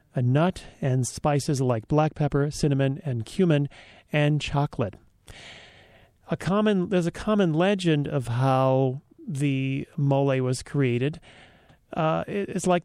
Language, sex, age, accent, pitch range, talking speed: English, male, 40-59, American, 130-160 Hz, 115 wpm